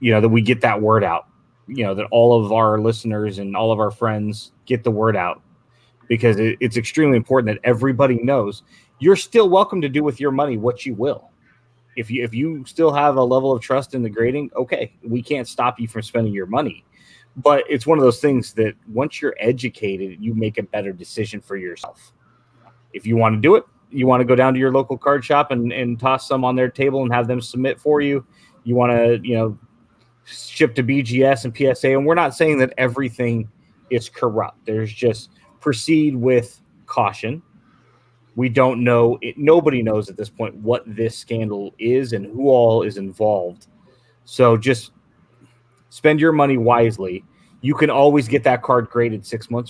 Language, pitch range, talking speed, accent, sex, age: English, 115-135 Hz, 200 wpm, American, male, 30-49